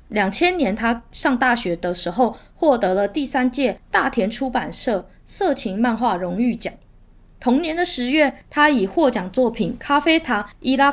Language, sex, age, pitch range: Chinese, female, 20-39, 210-285 Hz